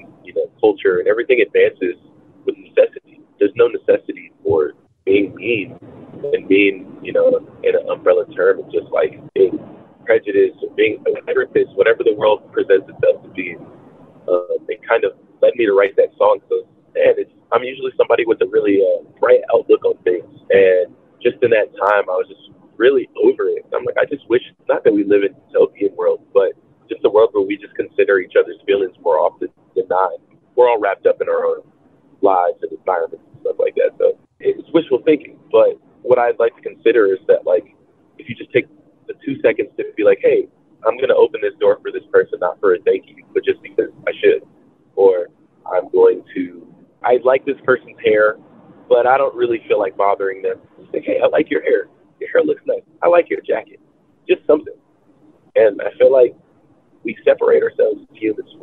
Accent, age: American, 30-49